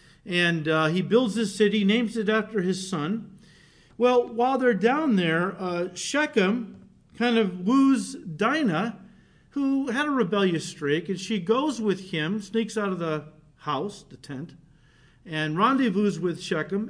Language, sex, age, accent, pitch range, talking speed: English, male, 50-69, American, 165-230 Hz, 155 wpm